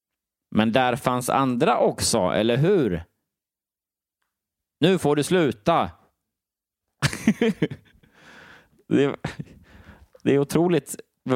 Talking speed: 85 wpm